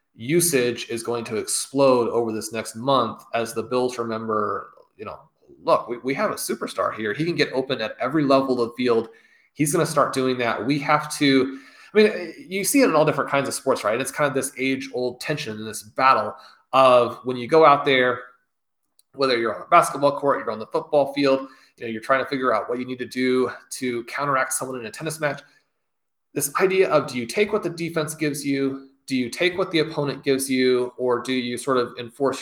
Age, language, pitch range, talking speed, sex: 30-49, English, 125-145 Hz, 225 wpm, male